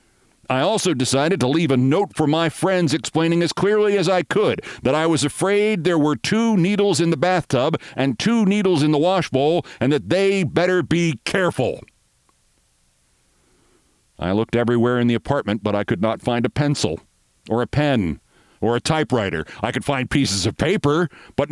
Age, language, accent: 50-69, English, American